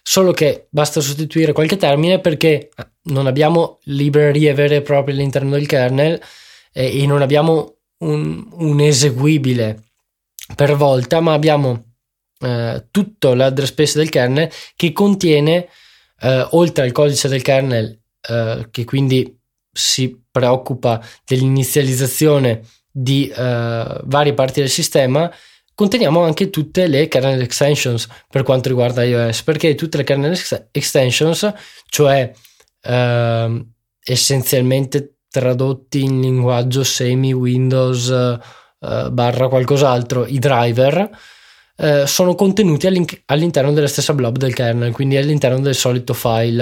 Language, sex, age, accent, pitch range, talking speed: Italian, male, 20-39, native, 125-155 Hz, 125 wpm